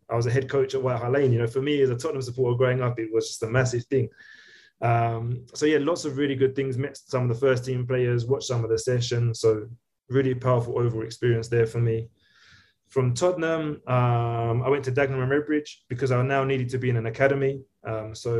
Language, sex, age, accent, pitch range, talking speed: English, male, 20-39, British, 120-135 Hz, 235 wpm